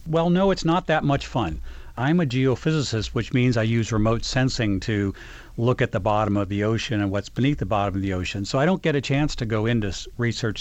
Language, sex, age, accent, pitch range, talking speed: English, male, 50-69, American, 105-130 Hz, 240 wpm